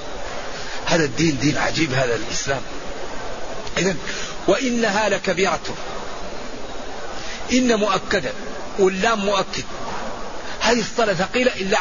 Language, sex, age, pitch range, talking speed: Arabic, male, 50-69, 185-215 Hz, 85 wpm